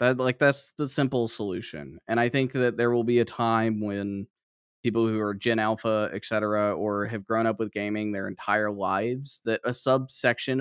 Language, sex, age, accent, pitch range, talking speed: English, male, 10-29, American, 100-125 Hz, 200 wpm